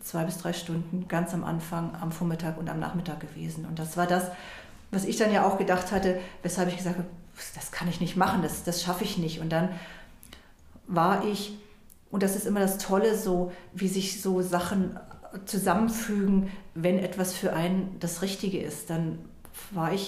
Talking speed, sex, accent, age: 190 wpm, female, German, 40-59